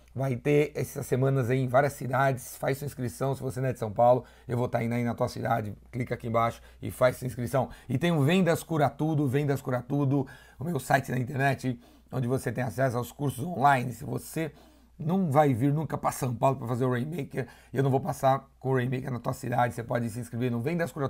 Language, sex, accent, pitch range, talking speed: Portuguese, male, Brazilian, 125-145 Hz, 240 wpm